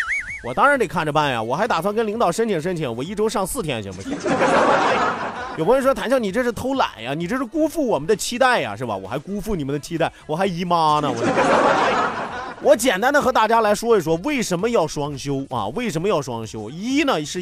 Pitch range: 145-235 Hz